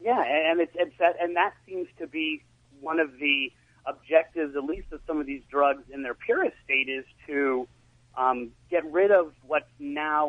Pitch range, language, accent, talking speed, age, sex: 130-160 Hz, English, American, 190 wpm, 30-49, male